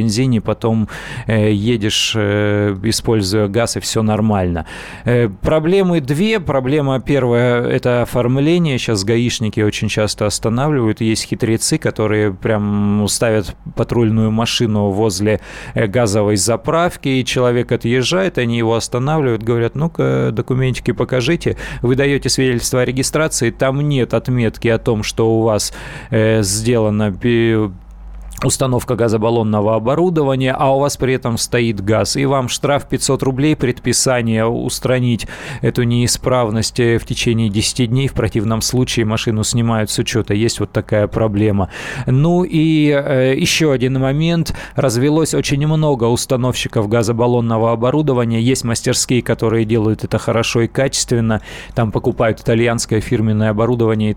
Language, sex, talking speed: Russian, male, 125 wpm